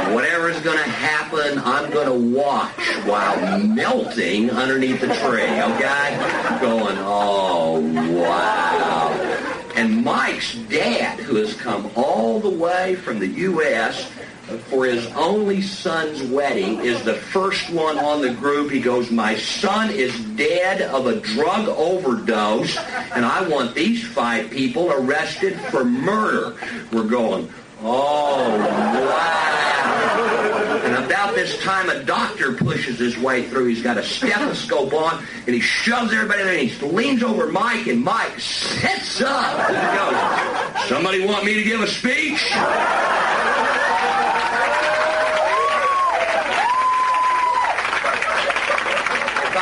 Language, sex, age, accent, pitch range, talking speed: English, male, 50-69, American, 130-210 Hz, 125 wpm